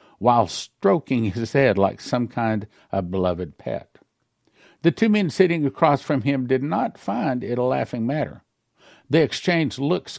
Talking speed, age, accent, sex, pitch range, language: 160 wpm, 60-79, American, male, 110-145 Hz, English